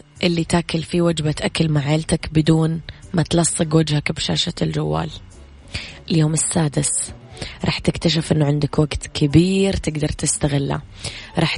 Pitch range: 145-165 Hz